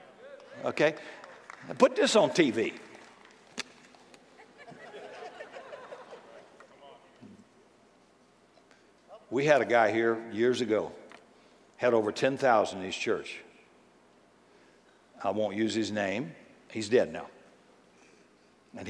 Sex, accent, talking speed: male, American, 85 wpm